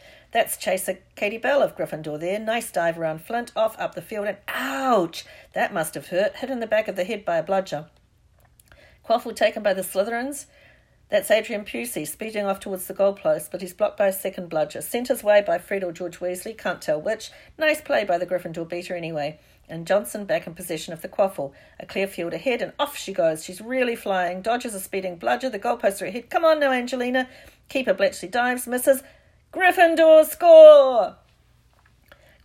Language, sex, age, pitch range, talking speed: English, female, 50-69, 165-240 Hz, 195 wpm